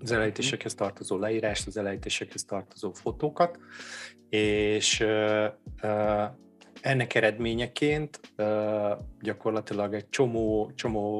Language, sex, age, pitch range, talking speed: Hungarian, male, 30-49, 100-125 Hz, 75 wpm